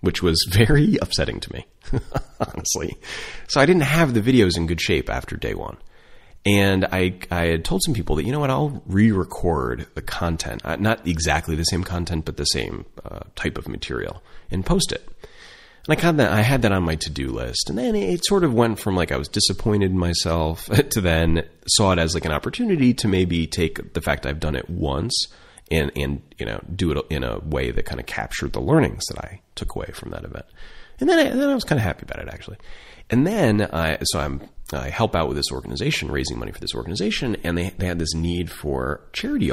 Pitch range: 80-110 Hz